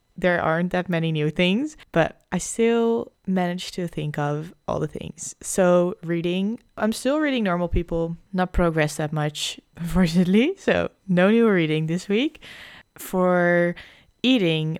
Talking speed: 145 wpm